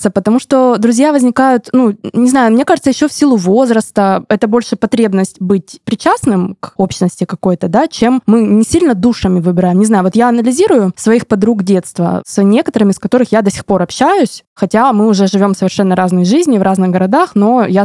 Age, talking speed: 20-39, 190 wpm